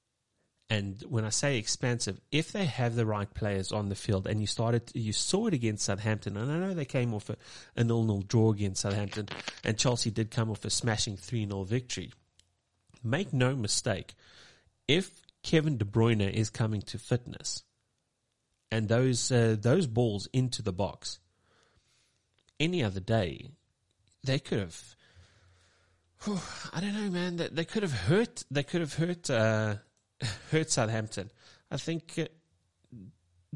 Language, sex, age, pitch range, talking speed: English, male, 30-49, 105-130 Hz, 160 wpm